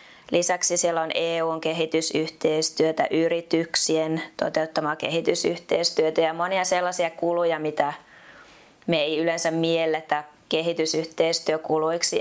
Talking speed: 85 wpm